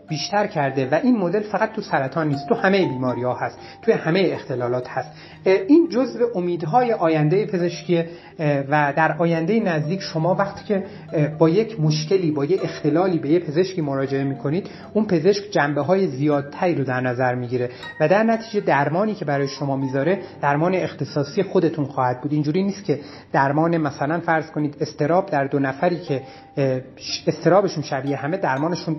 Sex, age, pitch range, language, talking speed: male, 30-49, 145-195 Hz, Persian, 165 wpm